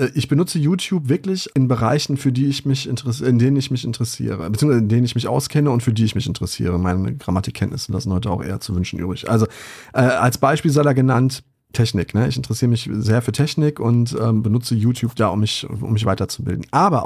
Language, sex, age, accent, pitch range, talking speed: German, male, 30-49, German, 110-135 Hz, 225 wpm